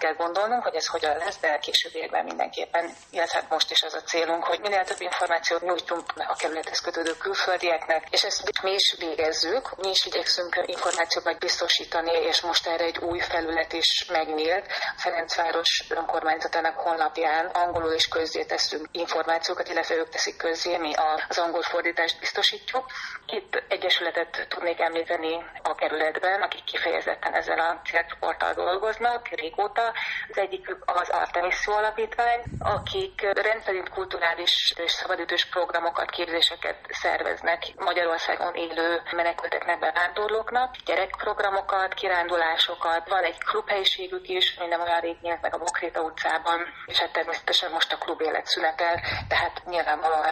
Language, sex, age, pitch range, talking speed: Hungarian, female, 30-49, 165-195 Hz, 135 wpm